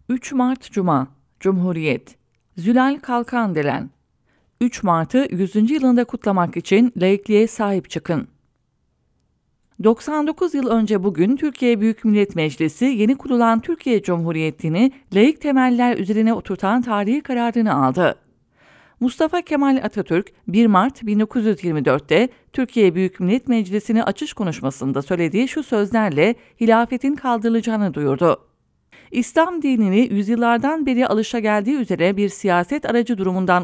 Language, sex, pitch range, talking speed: English, female, 185-250 Hz, 115 wpm